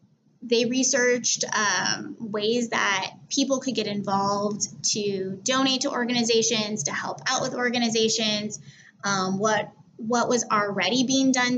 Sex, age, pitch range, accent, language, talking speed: female, 20-39, 205-240 Hz, American, English, 130 wpm